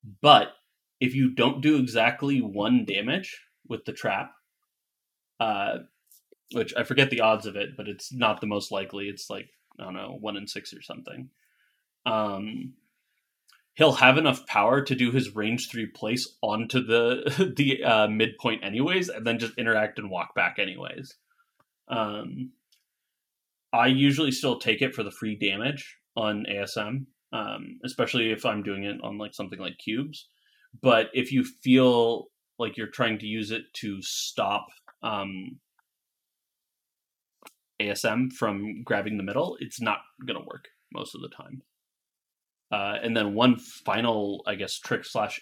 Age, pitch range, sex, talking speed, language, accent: 20-39, 105-135 Hz, male, 155 wpm, English, American